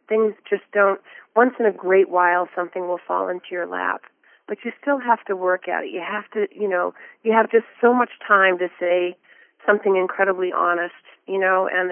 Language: English